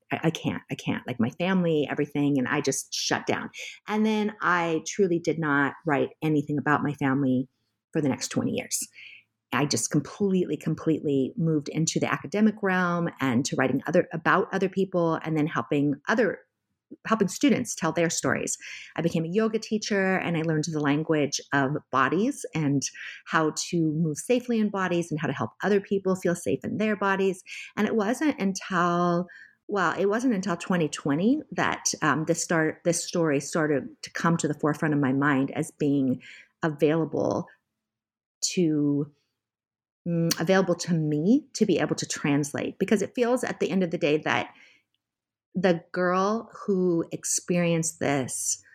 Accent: American